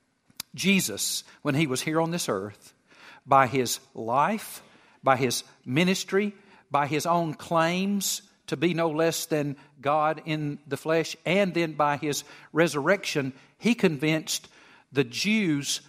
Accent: American